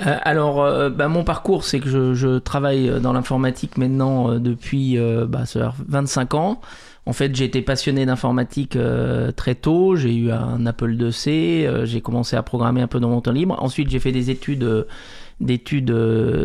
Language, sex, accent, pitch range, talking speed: French, male, French, 125-145 Hz, 195 wpm